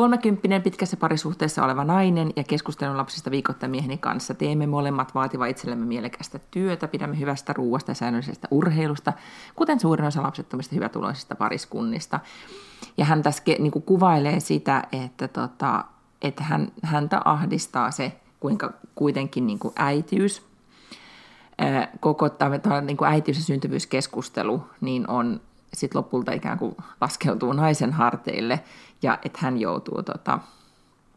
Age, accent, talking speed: 30-49, native, 125 wpm